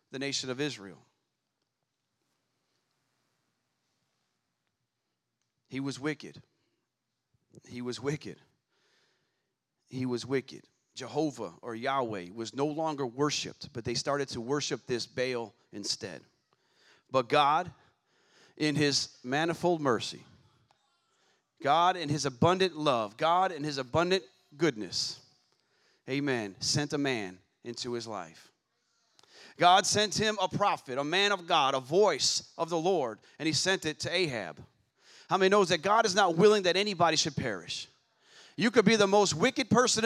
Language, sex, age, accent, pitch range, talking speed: English, male, 40-59, American, 135-200 Hz, 135 wpm